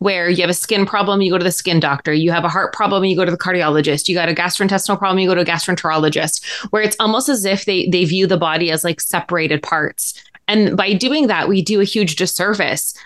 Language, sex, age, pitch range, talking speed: English, female, 20-39, 170-205 Hz, 255 wpm